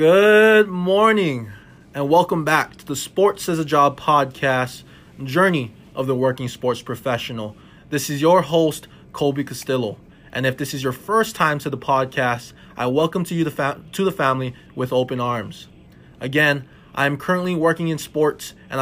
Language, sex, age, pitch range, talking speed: English, male, 20-39, 130-165 Hz, 170 wpm